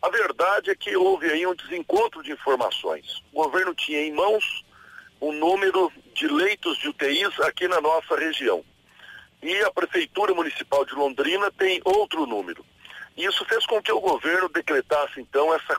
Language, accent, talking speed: Portuguese, Brazilian, 165 wpm